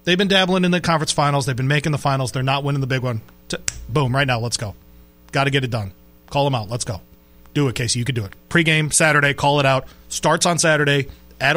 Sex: male